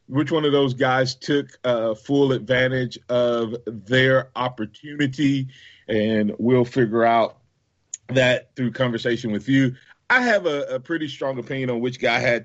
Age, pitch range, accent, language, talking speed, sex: 40-59, 120-145 Hz, American, English, 155 wpm, male